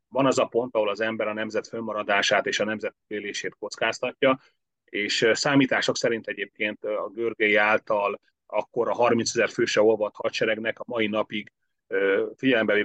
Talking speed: 150 wpm